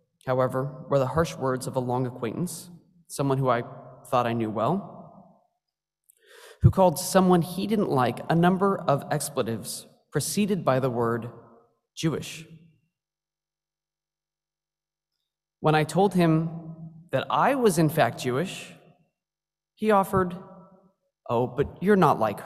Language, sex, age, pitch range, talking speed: English, male, 20-39, 140-175 Hz, 130 wpm